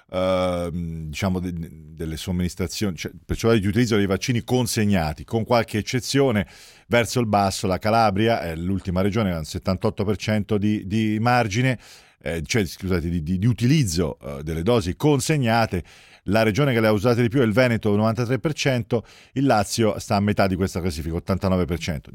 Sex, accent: male, native